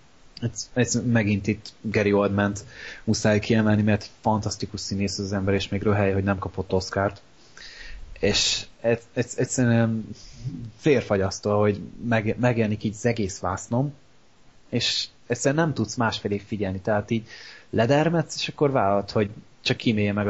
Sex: male